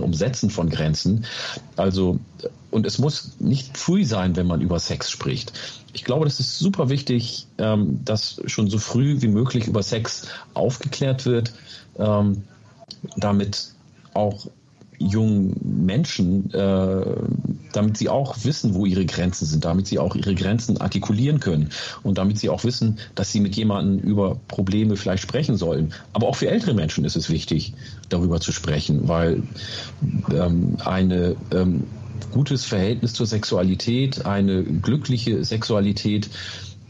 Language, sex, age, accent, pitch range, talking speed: German, male, 40-59, German, 95-120 Hz, 140 wpm